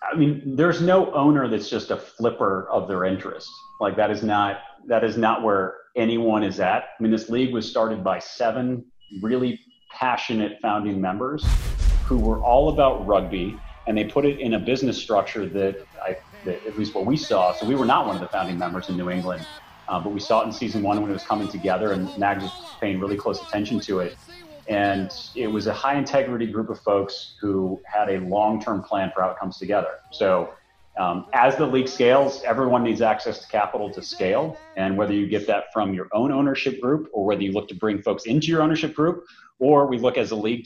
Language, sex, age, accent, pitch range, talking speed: English, male, 30-49, American, 100-135 Hz, 215 wpm